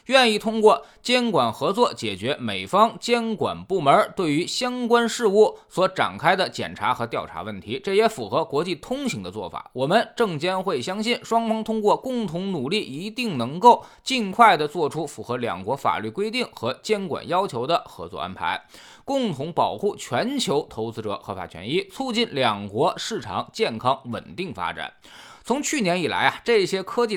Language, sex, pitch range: Chinese, male, 155-240 Hz